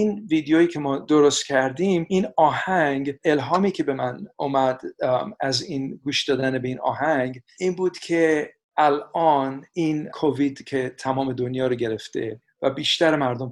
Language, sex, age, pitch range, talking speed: Persian, male, 50-69, 130-155 Hz, 150 wpm